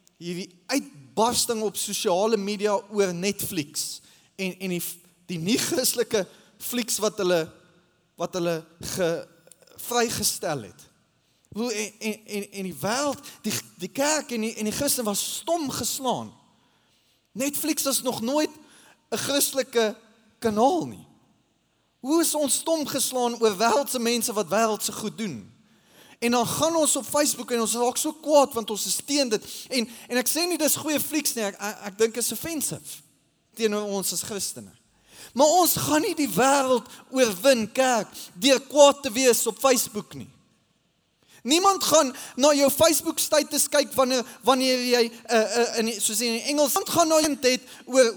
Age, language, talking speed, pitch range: 20-39, English, 160 wpm, 215-280 Hz